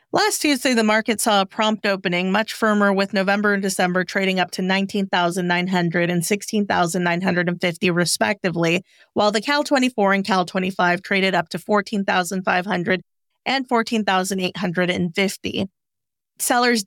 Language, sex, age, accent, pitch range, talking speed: English, female, 40-59, American, 180-225 Hz, 115 wpm